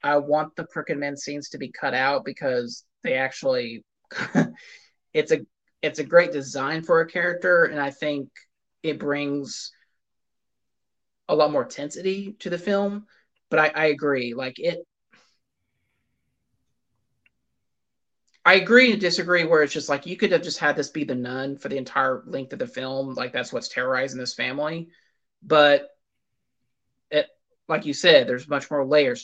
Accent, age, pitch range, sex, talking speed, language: American, 30-49, 130-175 Hz, male, 160 wpm, English